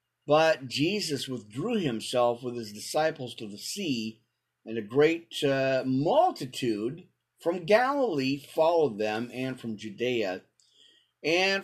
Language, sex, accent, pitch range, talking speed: English, male, American, 120-160 Hz, 120 wpm